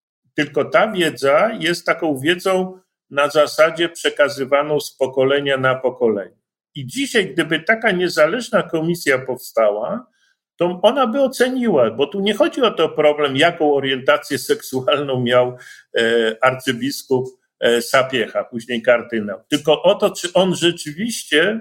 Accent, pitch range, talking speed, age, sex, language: native, 135-180 Hz, 125 wpm, 50-69, male, Polish